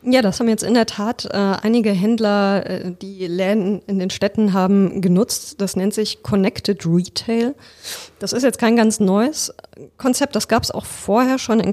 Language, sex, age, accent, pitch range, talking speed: German, female, 20-39, German, 185-220 Hz, 190 wpm